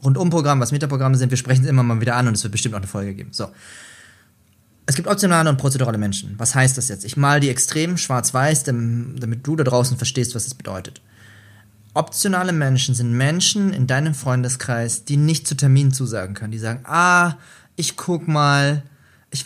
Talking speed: 195 wpm